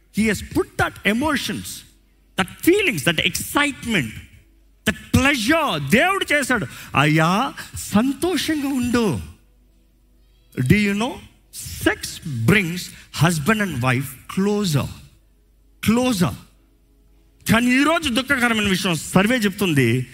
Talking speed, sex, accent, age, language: 95 wpm, male, native, 50-69, Telugu